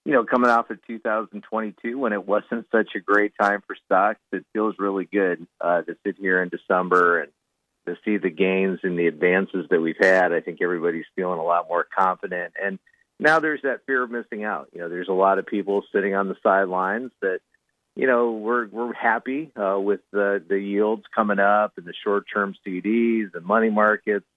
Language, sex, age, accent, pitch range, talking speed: English, male, 40-59, American, 95-110 Hz, 205 wpm